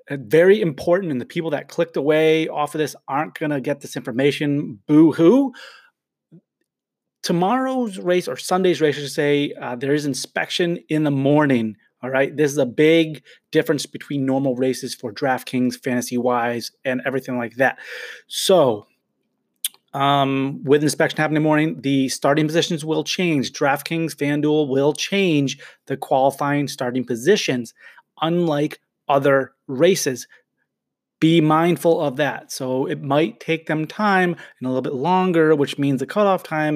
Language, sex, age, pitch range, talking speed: English, male, 30-49, 135-165 Hz, 155 wpm